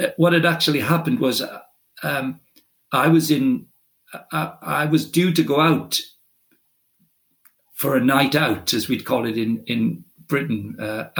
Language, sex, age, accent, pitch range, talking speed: English, male, 50-69, British, 130-170 Hz, 145 wpm